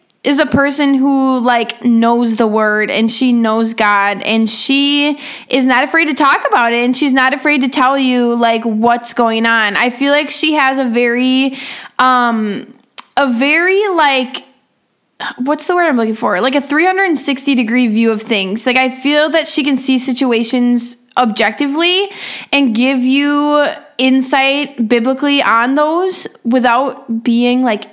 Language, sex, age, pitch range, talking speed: English, female, 10-29, 235-295 Hz, 160 wpm